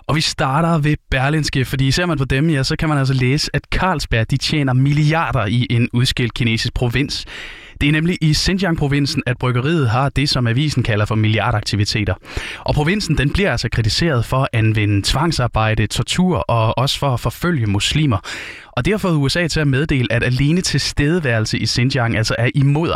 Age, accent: 20-39, native